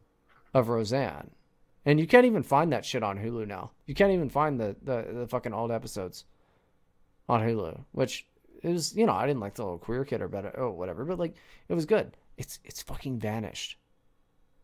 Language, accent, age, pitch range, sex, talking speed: English, American, 30-49, 120-165 Hz, male, 200 wpm